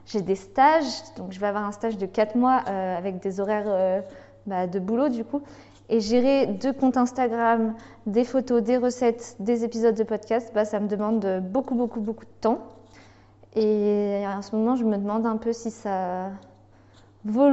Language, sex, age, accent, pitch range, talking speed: French, female, 20-39, French, 195-235 Hz, 190 wpm